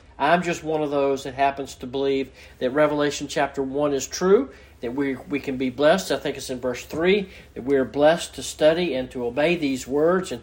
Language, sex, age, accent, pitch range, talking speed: English, male, 40-59, American, 130-165 Hz, 225 wpm